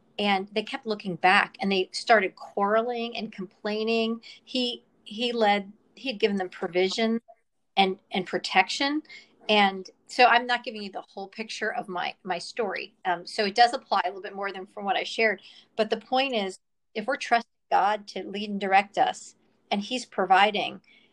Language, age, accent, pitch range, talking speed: English, 40-59, American, 190-230 Hz, 185 wpm